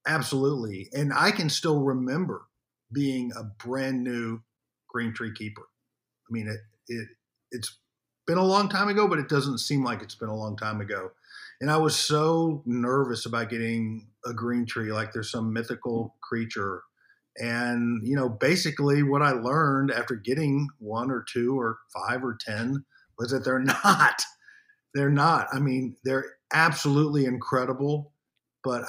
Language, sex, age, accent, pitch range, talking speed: English, male, 50-69, American, 115-135 Hz, 160 wpm